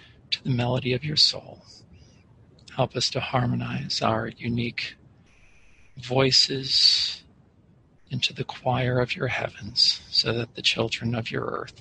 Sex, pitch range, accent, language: male, 110-125 Hz, American, English